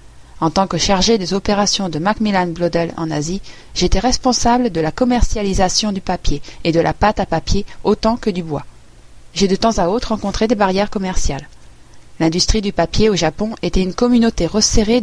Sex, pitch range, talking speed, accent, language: female, 165-225 Hz, 185 wpm, French, French